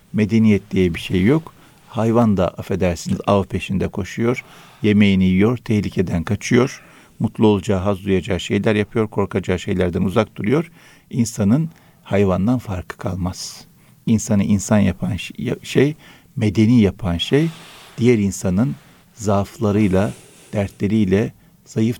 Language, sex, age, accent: Turkish, male, 60-79, native